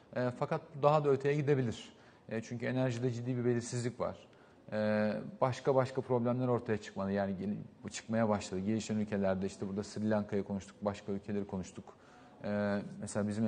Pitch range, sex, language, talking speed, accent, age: 105-125 Hz, male, Turkish, 145 wpm, native, 40-59